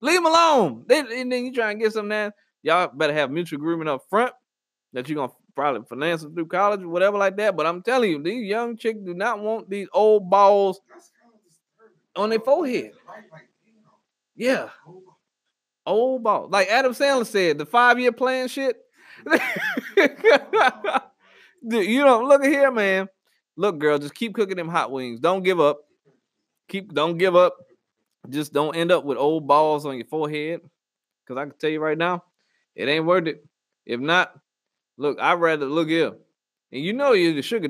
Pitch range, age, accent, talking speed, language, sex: 155-230 Hz, 20-39, American, 185 wpm, English, male